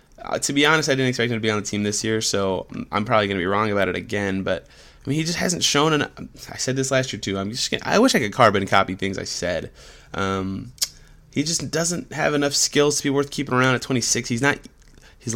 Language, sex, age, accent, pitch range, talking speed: English, male, 20-39, American, 95-125 Hz, 265 wpm